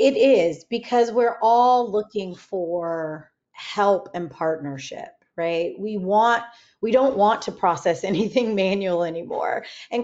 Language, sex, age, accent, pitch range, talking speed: English, female, 30-49, American, 200-265 Hz, 130 wpm